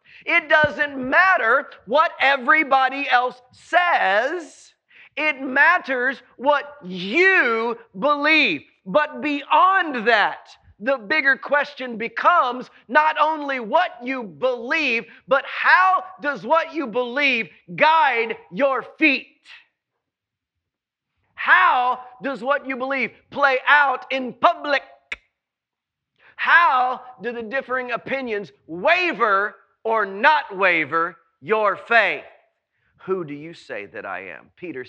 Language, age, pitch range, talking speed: English, 40-59, 210-300 Hz, 105 wpm